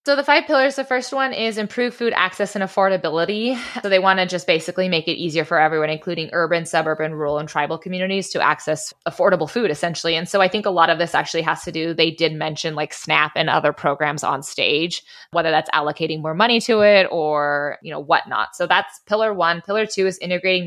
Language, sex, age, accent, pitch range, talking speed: English, female, 20-39, American, 160-205 Hz, 225 wpm